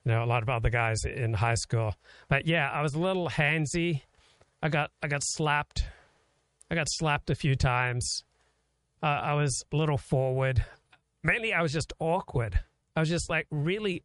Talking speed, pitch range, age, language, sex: 190 wpm, 125-150 Hz, 40-59, English, male